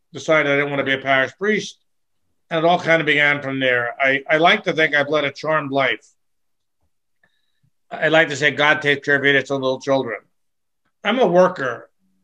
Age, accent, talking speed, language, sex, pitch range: 50-69, American, 205 wpm, English, male, 135-165 Hz